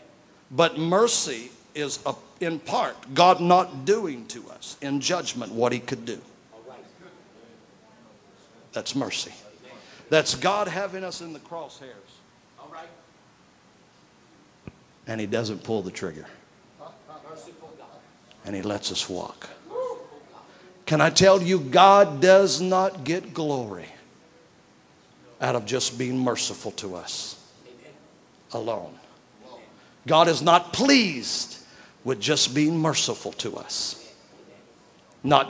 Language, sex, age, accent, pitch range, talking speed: English, male, 50-69, American, 120-180 Hz, 110 wpm